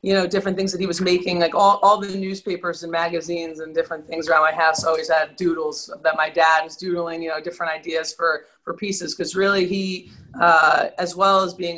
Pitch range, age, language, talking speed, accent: 160-180 Hz, 30-49, English, 225 wpm, American